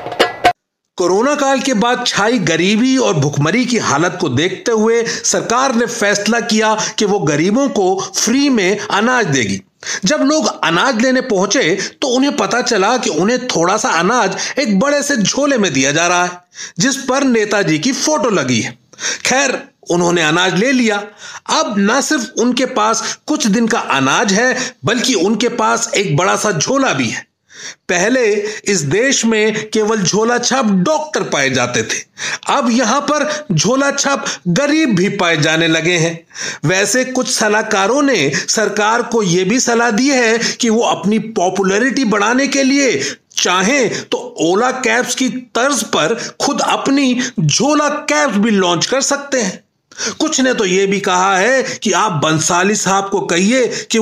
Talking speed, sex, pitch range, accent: 165 wpm, male, 195-265 Hz, native